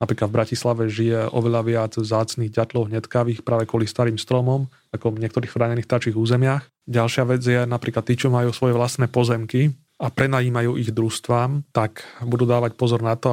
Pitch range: 115-125 Hz